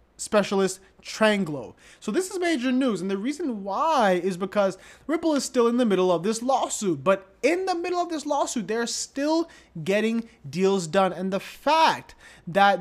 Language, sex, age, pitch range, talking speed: English, male, 20-39, 170-215 Hz, 180 wpm